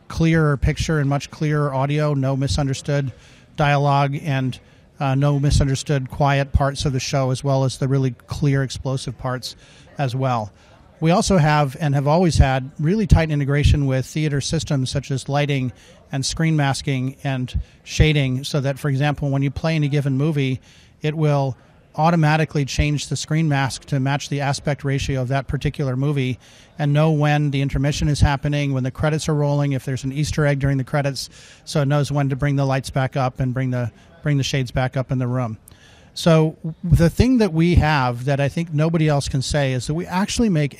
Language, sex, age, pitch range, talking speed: English, male, 40-59, 135-150 Hz, 195 wpm